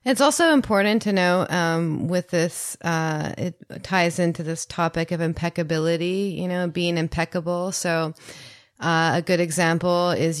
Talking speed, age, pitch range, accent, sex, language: 150 wpm, 30-49, 155-180 Hz, American, female, English